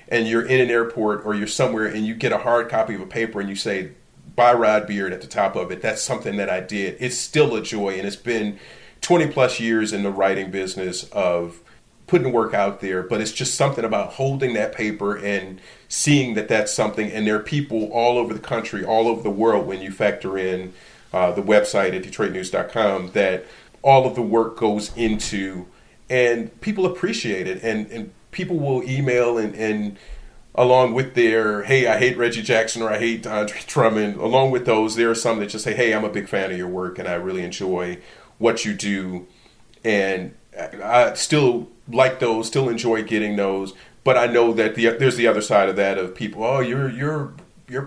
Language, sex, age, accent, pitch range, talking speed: English, male, 40-59, American, 105-130 Hz, 210 wpm